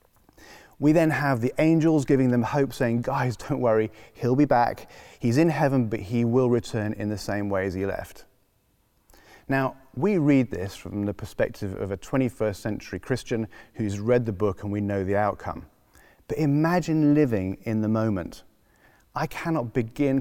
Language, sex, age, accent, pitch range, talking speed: English, male, 30-49, British, 105-135 Hz, 175 wpm